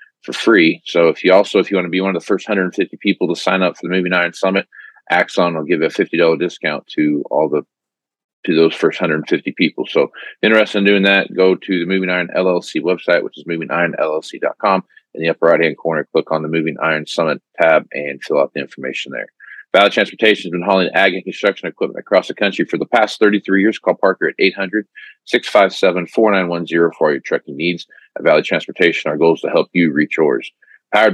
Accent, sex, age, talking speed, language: American, male, 40-59, 215 wpm, English